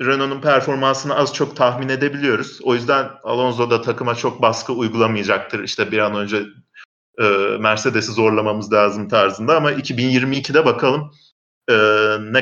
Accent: native